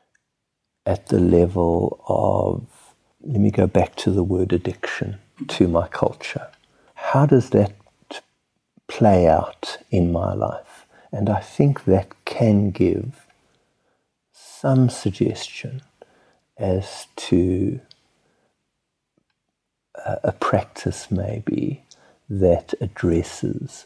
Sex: male